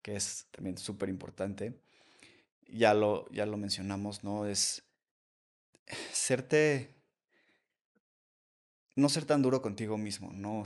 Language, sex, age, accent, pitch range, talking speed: Spanish, male, 20-39, Mexican, 105-120 Hz, 120 wpm